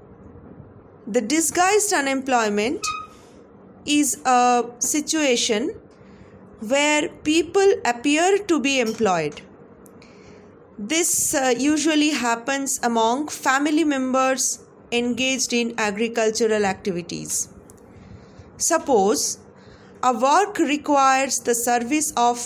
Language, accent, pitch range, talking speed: English, Indian, 225-285 Hz, 80 wpm